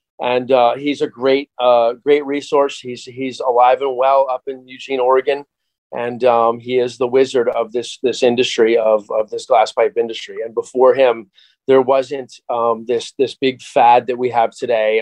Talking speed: 190 wpm